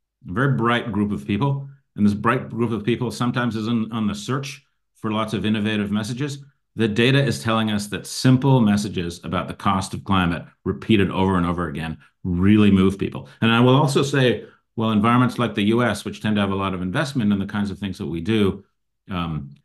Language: English